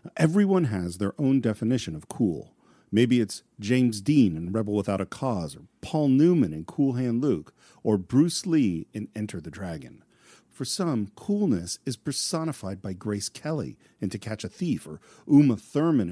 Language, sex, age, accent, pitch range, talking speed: English, male, 50-69, American, 105-150 Hz, 170 wpm